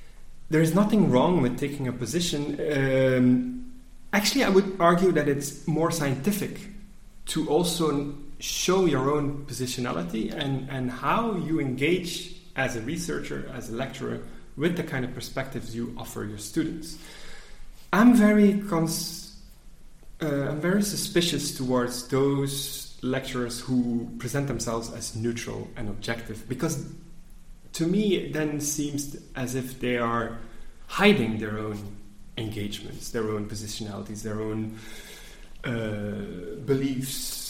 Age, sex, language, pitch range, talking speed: 30-49, male, English, 120-170 Hz, 130 wpm